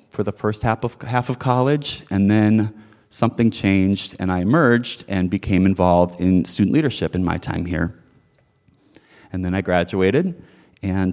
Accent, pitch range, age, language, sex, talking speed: American, 95-125 Hz, 30-49, English, male, 160 wpm